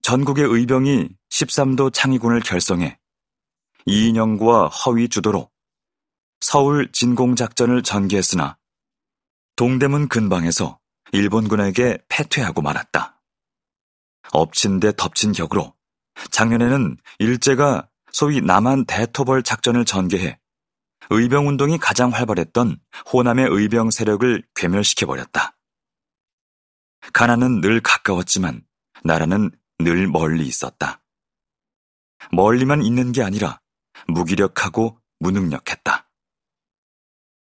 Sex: male